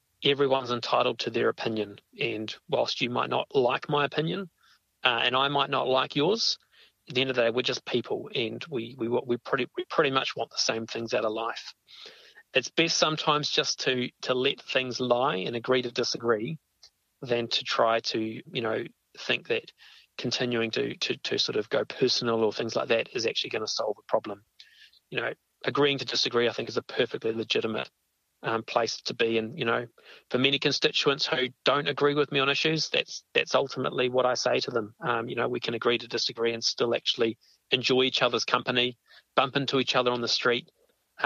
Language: English